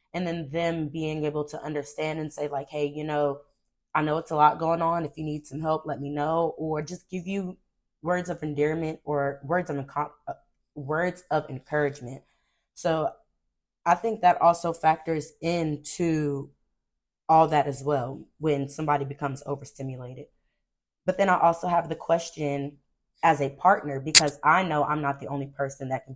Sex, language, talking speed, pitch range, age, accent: female, English, 175 wpm, 140-165 Hz, 20-39, American